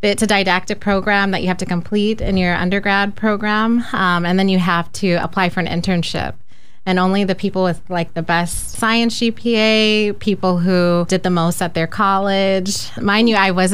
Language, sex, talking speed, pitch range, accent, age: English, female, 195 wpm, 170-200 Hz, American, 20-39